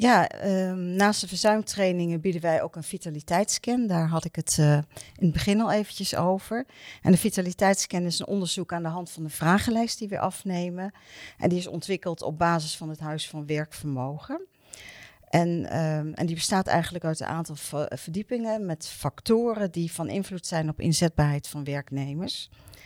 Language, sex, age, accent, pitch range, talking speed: English, female, 50-69, Dutch, 150-185 Hz, 170 wpm